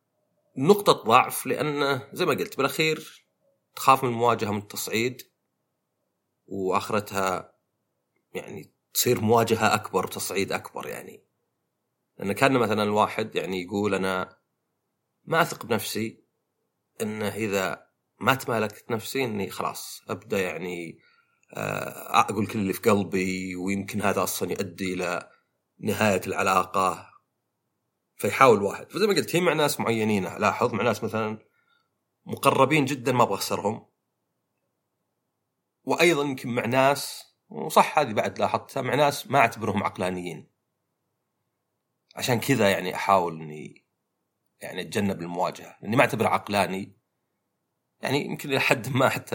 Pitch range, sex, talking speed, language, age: 95-130 Hz, male, 120 wpm, Arabic, 30-49